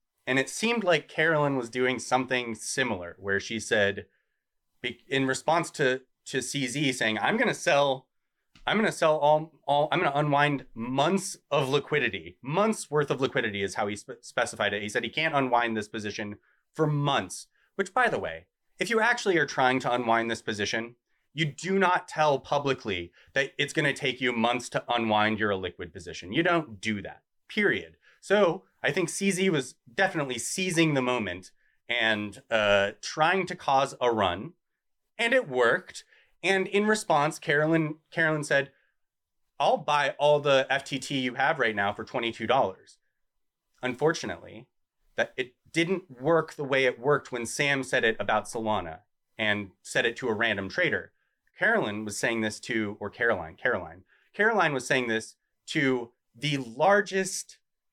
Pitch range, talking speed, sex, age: 115-155 Hz, 170 wpm, male, 30-49